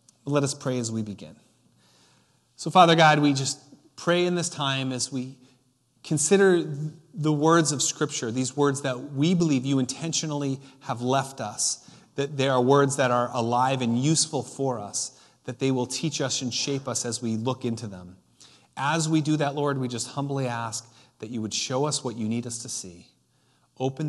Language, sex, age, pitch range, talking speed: English, male, 30-49, 120-145 Hz, 190 wpm